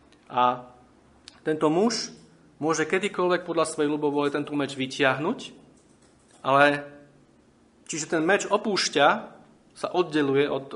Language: Slovak